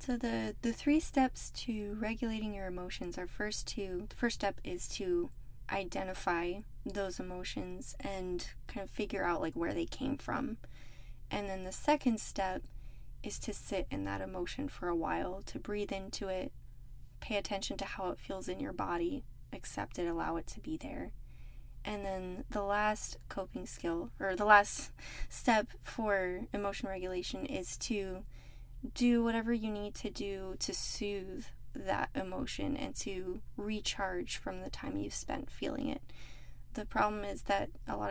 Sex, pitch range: female, 190-235 Hz